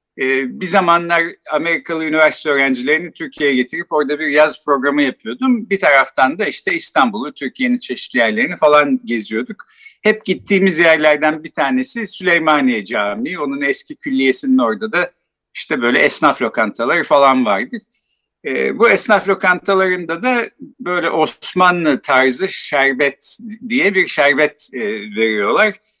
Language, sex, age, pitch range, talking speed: Turkish, male, 50-69, 150-235 Hz, 120 wpm